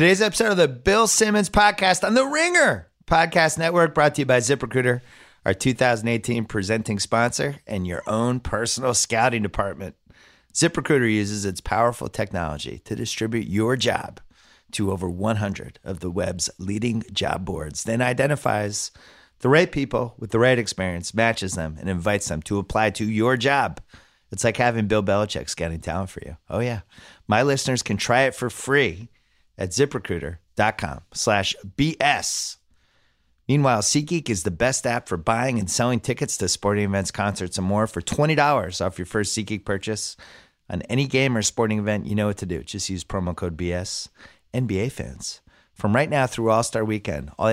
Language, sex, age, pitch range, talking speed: English, male, 30-49, 95-130 Hz, 170 wpm